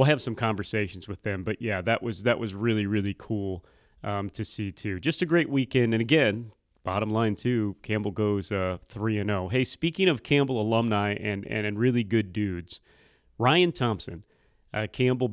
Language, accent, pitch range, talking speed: English, American, 105-125 Hz, 185 wpm